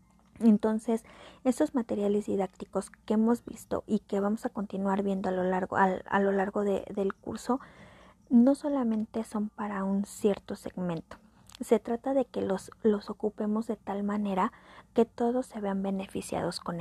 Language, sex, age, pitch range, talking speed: Spanish, female, 30-49, 195-235 Hz, 165 wpm